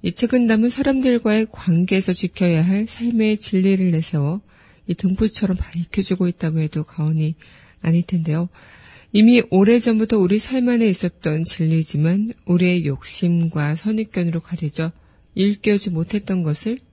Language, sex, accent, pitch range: Korean, female, native, 165-205 Hz